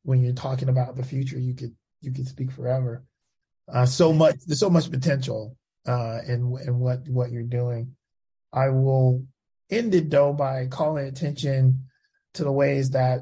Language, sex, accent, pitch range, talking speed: English, male, American, 125-140 Hz, 170 wpm